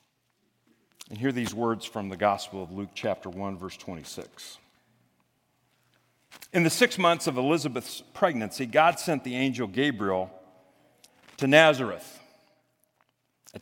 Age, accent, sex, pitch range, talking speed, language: 50-69, American, male, 125-165 Hz, 125 wpm, English